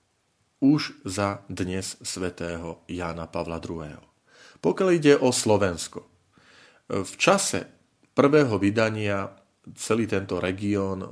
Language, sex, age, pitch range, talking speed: Slovak, male, 40-59, 90-110 Hz, 95 wpm